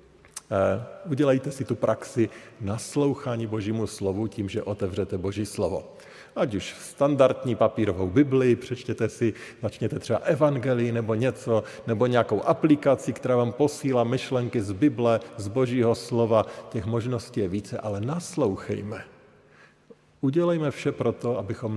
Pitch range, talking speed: 105-140 Hz, 130 wpm